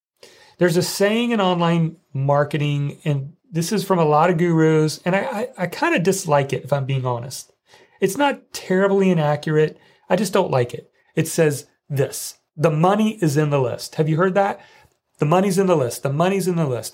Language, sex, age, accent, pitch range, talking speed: English, male, 40-59, American, 145-205 Hz, 205 wpm